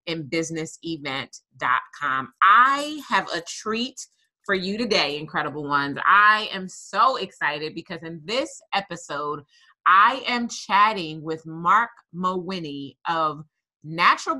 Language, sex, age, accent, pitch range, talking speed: English, female, 30-49, American, 165-225 Hz, 115 wpm